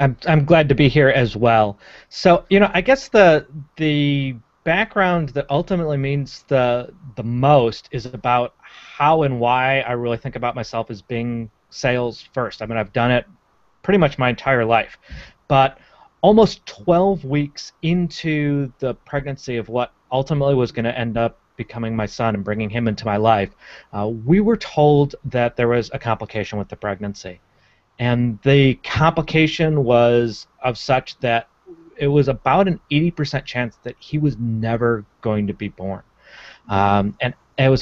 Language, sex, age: English, male, 30-49